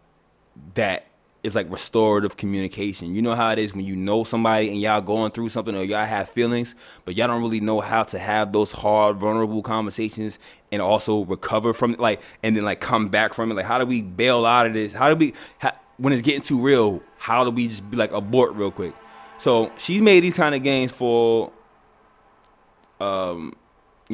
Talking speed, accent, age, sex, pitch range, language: 200 wpm, American, 20-39, male, 100-115 Hz, English